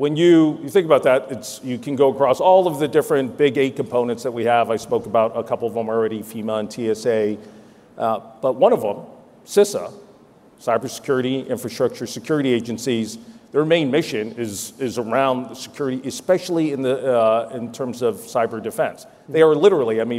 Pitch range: 120-150 Hz